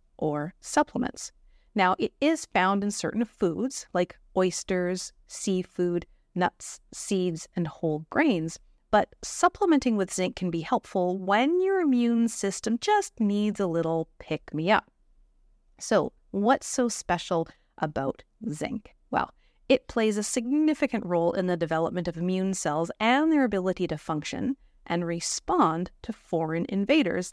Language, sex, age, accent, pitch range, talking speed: English, female, 30-49, American, 175-245 Hz, 135 wpm